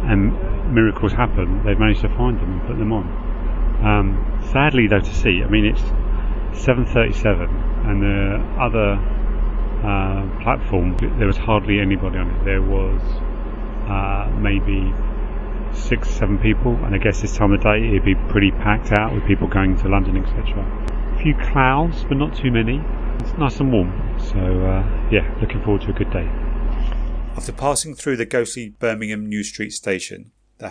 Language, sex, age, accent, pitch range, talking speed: English, male, 40-59, British, 95-110 Hz, 170 wpm